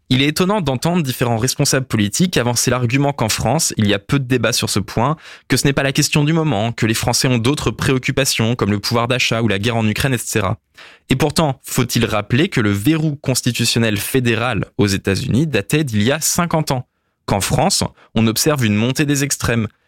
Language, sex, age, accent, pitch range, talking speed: French, male, 20-39, French, 110-145 Hz, 210 wpm